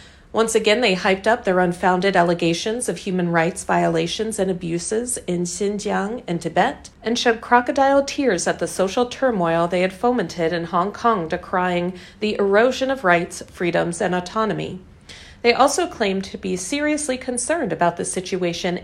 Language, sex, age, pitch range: Chinese, female, 40-59, 180-235 Hz